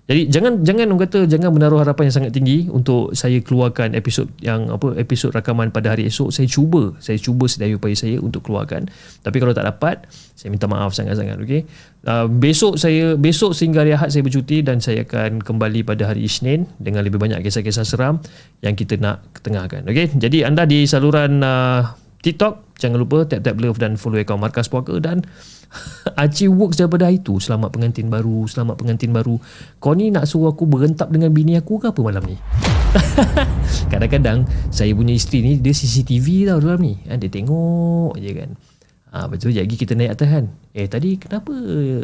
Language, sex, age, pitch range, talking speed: Malay, male, 30-49, 110-155 Hz, 190 wpm